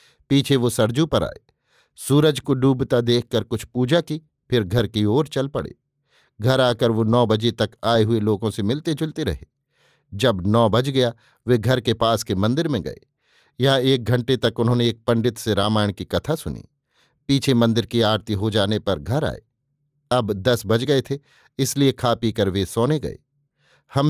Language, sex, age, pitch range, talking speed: Hindi, male, 50-69, 115-145 Hz, 190 wpm